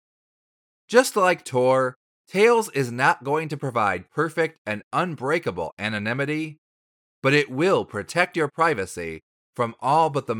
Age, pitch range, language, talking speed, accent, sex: 30-49, 110-175 Hz, English, 135 wpm, American, male